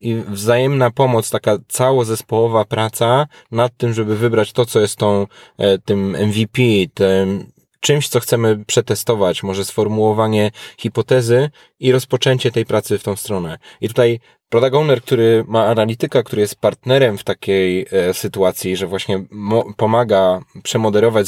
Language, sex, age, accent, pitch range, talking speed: Polish, male, 20-39, native, 100-120 Hz, 135 wpm